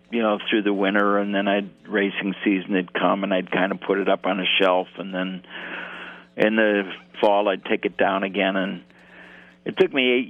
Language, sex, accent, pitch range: English, male, American, 85-110 Hz